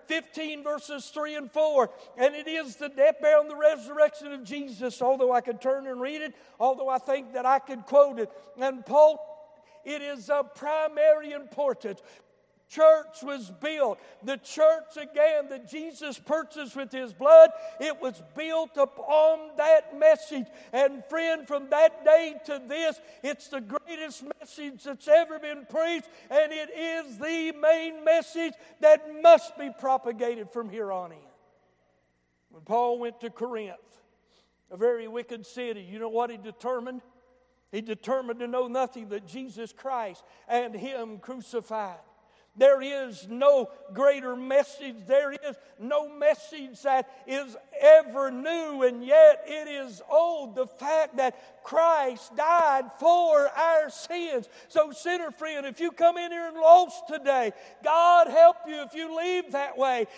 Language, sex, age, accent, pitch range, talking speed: English, male, 60-79, American, 250-310 Hz, 155 wpm